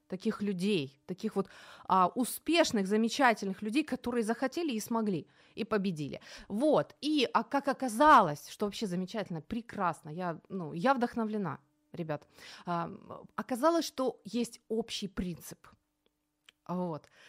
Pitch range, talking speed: 180-245 Hz, 120 wpm